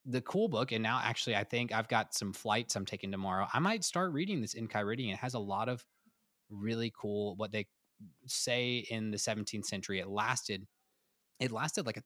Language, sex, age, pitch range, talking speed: English, male, 20-39, 95-115 Hz, 210 wpm